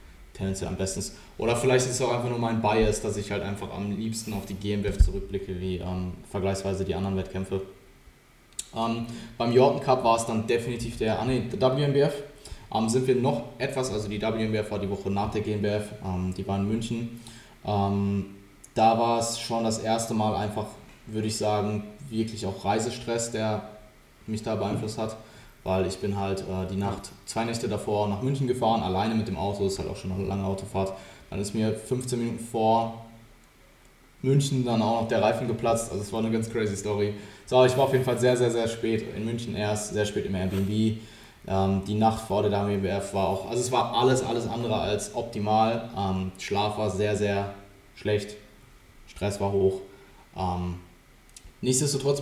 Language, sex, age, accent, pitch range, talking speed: German, male, 20-39, German, 100-115 Hz, 190 wpm